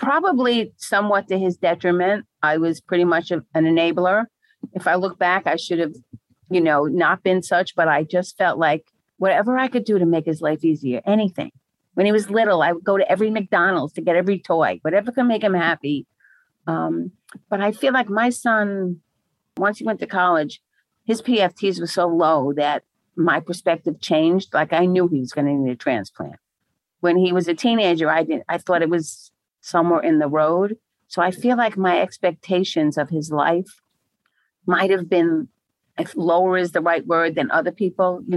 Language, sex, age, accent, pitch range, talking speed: English, female, 50-69, American, 160-195 Hz, 195 wpm